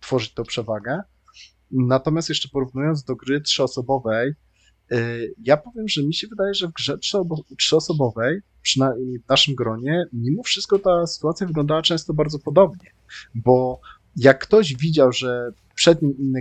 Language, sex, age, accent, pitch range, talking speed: Polish, male, 20-39, native, 115-155 Hz, 150 wpm